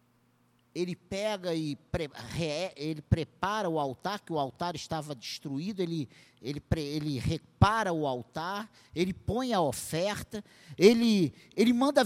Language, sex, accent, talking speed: Portuguese, male, Brazilian, 140 wpm